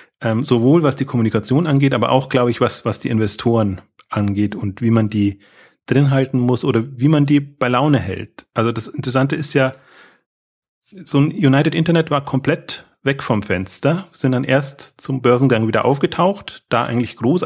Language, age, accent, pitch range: German, 30-49, German, 120-150 Hz